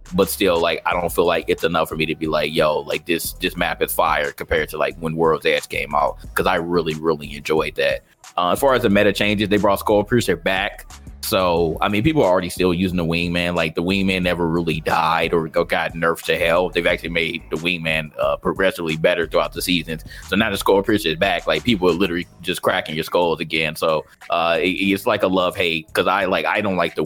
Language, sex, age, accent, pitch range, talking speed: English, male, 30-49, American, 80-100 Hz, 240 wpm